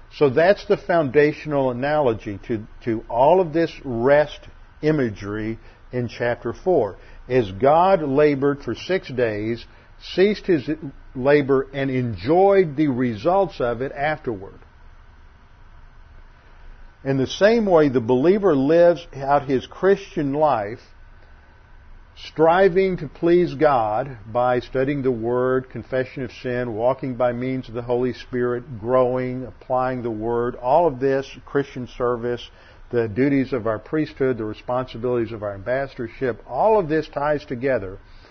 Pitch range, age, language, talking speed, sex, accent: 115-145 Hz, 50-69, English, 130 wpm, male, American